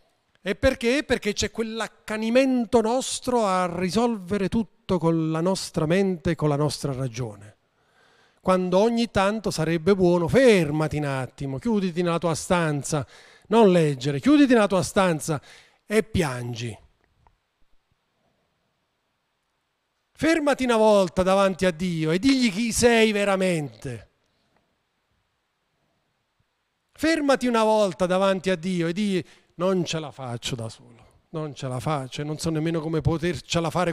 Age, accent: 40-59, native